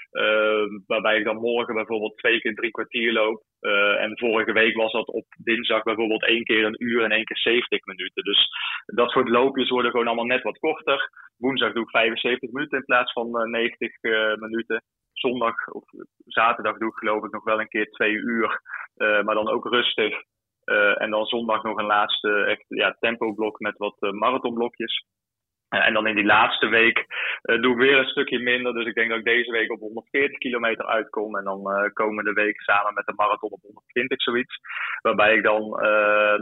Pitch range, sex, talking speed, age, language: 105-120 Hz, male, 205 wpm, 20-39, Dutch